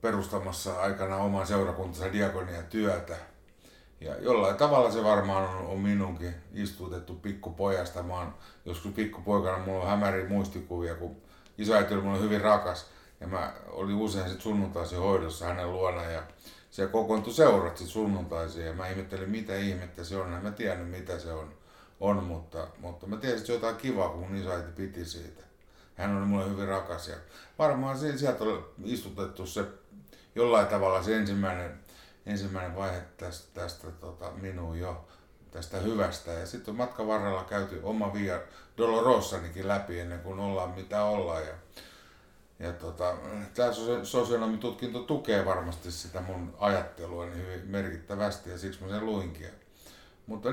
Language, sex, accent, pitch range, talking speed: Finnish, male, native, 85-105 Hz, 155 wpm